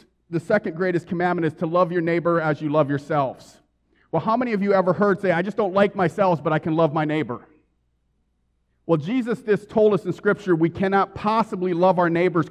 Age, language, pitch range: 40-59, English, 140-180 Hz